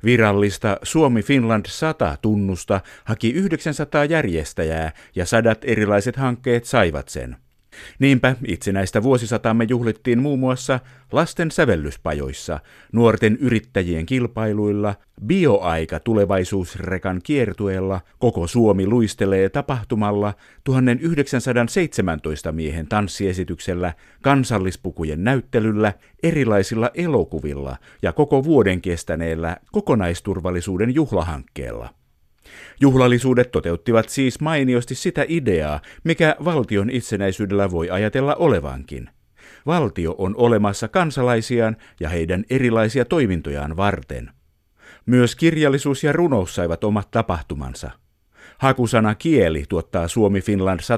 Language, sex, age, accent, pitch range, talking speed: Finnish, male, 50-69, native, 90-125 Hz, 90 wpm